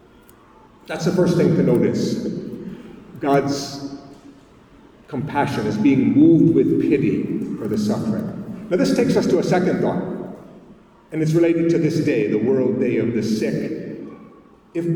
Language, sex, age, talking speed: English, male, 50-69, 150 wpm